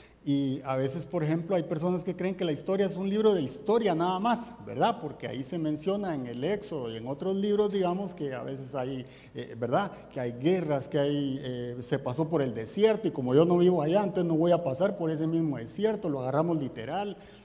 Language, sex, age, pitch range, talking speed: Spanish, male, 50-69, 135-200 Hz, 230 wpm